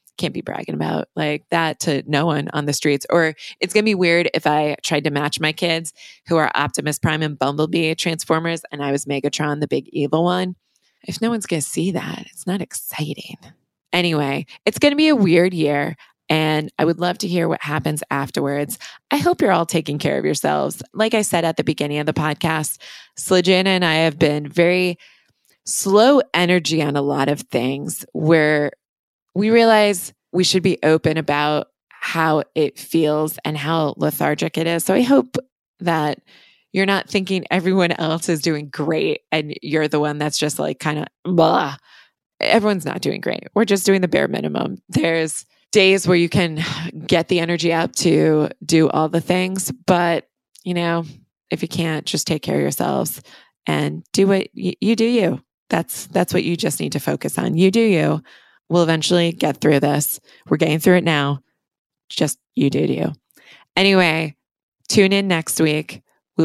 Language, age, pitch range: English, 20-39, 150-180 Hz